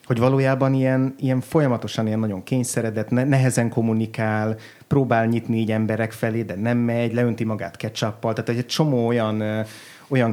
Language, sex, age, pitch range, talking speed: Hungarian, male, 30-49, 105-120 Hz, 155 wpm